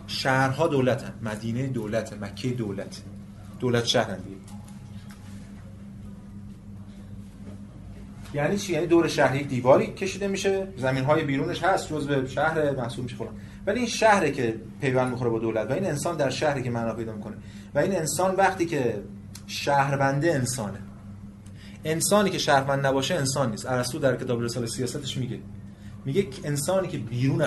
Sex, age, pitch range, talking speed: male, 30-49, 100-140 Hz, 155 wpm